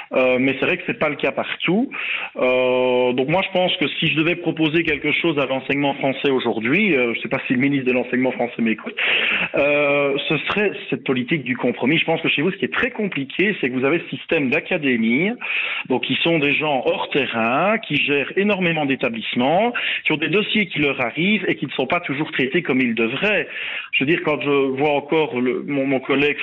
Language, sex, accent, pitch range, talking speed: French, male, French, 130-170 Hz, 230 wpm